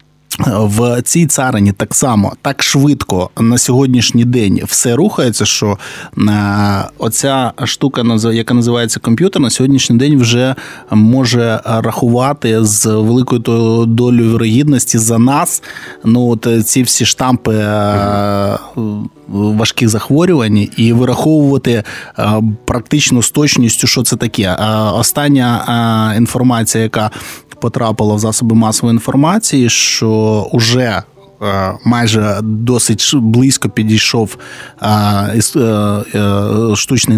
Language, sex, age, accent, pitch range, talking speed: Ukrainian, male, 20-39, native, 110-125 Hz, 95 wpm